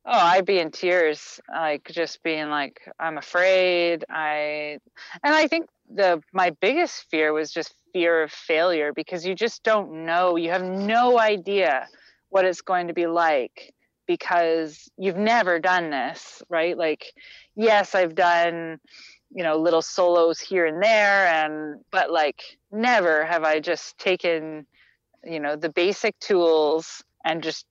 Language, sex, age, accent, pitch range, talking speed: English, female, 30-49, American, 155-185 Hz, 155 wpm